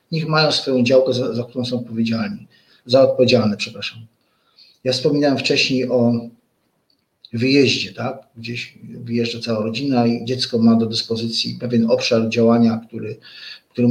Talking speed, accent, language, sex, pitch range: 140 wpm, native, Polish, male, 120-140 Hz